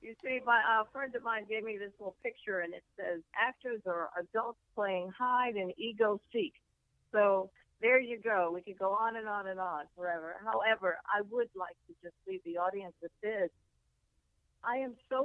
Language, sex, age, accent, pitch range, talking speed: English, female, 50-69, American, 170-205 Hz, 195 wpm